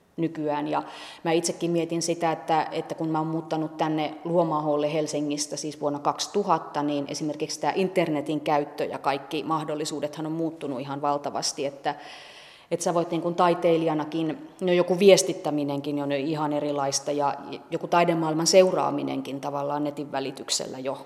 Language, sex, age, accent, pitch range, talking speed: Finnish, female, 30-49, native, 145-170 Hz, 140 wpm